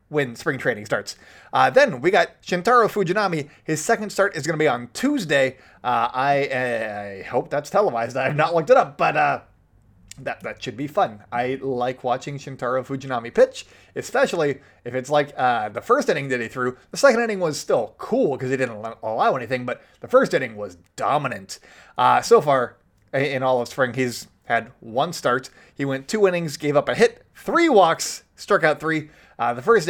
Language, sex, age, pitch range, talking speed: English, male, 20-39, 125-165 Hz, 195 wpm